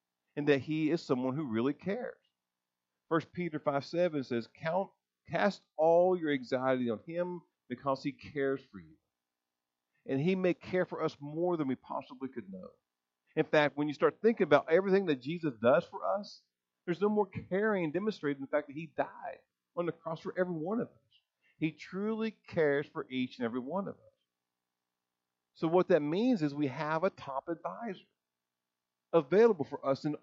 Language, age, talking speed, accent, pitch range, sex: English, 50-69, 180 wpm, American, 115-175 Hz, male